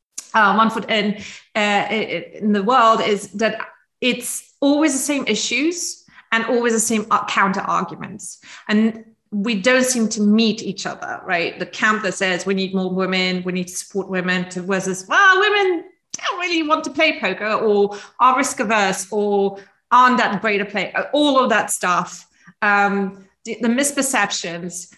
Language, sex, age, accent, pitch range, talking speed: English, female, 30-49, British, 200-260 Hz, 160 wpm